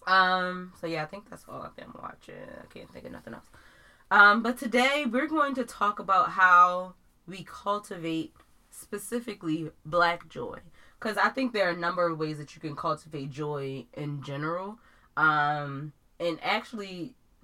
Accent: American